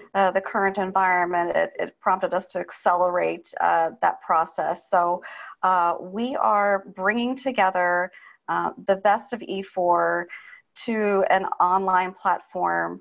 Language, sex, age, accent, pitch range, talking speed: English, female, 30-49, American, 180-215 Hz, 130 wpm